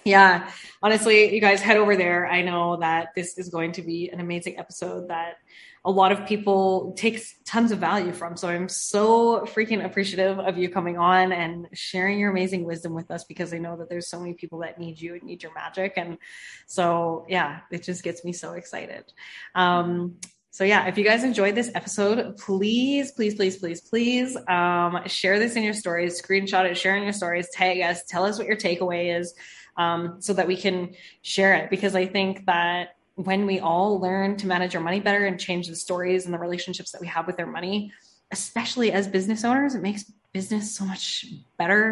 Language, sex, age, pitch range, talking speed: English, female, 20-39, 175-205 Hz, 210 wpm